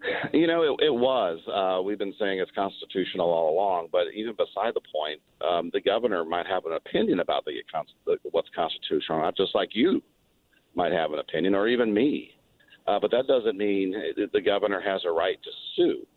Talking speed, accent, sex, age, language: 195 wpm, American, male, 50-69, English